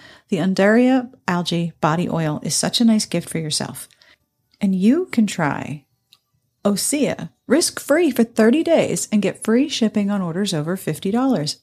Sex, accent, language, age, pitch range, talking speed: female, American, English, 40-59, 170-230 Hz, 150 wpm